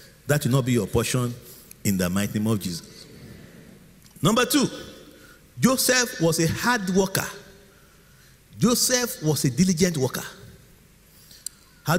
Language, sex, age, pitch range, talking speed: English, male, 50-69, 150-210 Hz, 125 wpm